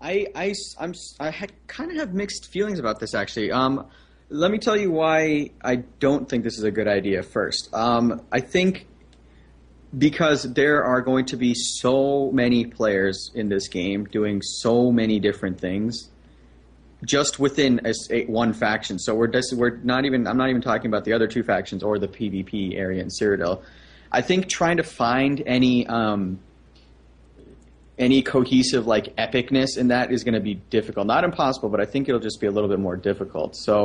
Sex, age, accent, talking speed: male, 30-49, American, 185 wpm